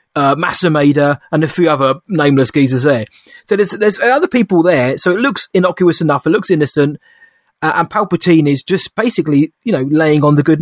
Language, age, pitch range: English, 20-39, 135-175 Hz